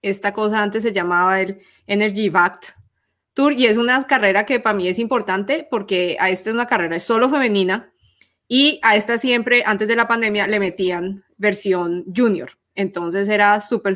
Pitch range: 190-230 Hz